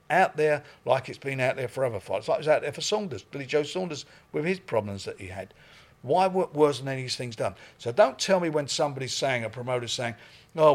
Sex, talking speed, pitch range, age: male, 250 wpm, 120-155 Hz, 50-69